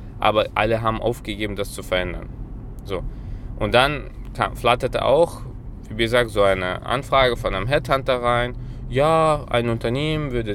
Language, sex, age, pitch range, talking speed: German, male, 20-39, 105-125 Hz, 140 wpm